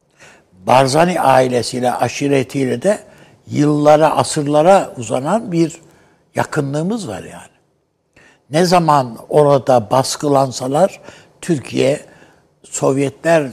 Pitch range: 125-160 Hz